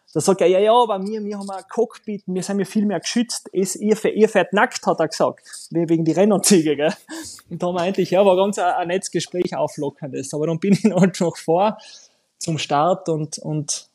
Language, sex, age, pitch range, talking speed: German, male, 20-39, 150-185 Hz, 215 wpm